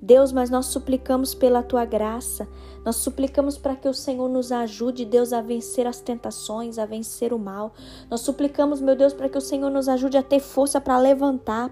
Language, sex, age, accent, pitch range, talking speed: Portuguese, female, 10-29, Brazilian, 240-270 Hz, 200 wpm